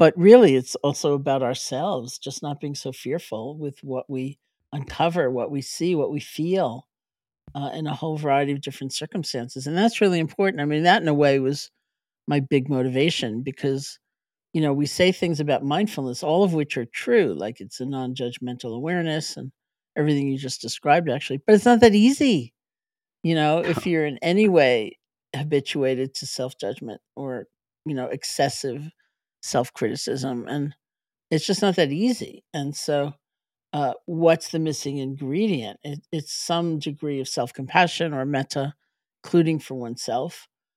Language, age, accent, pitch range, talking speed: English, 50-69, American, 135-160 Hz, 165 wpm